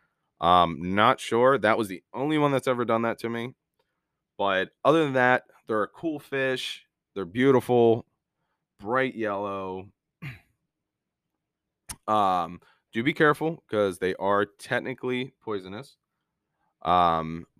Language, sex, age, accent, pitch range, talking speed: English, male, 20-39, American, 90-125 Hz, 125 wpm